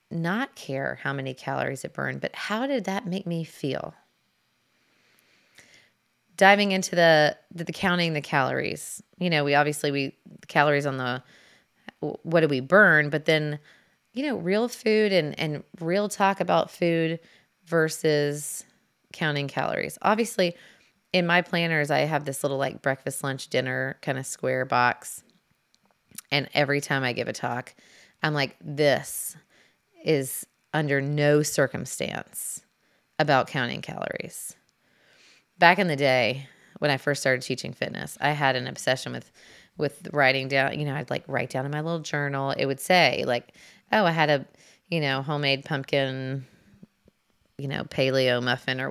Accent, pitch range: American, 135-170 Hz